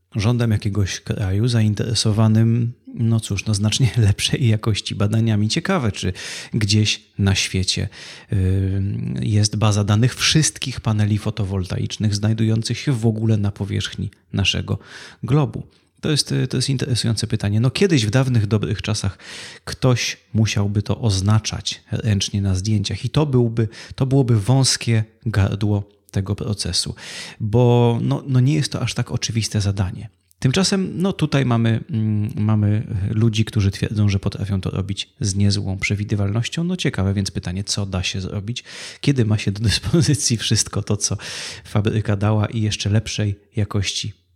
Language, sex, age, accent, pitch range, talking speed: Polish, male, 30-49, native, 100-120 Hz, 145 wpm